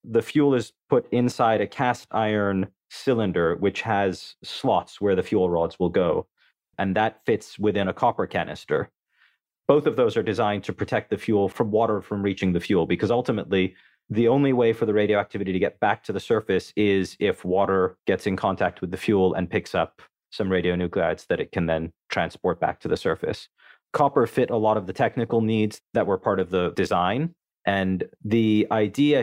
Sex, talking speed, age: male, 195 wpm, 30-49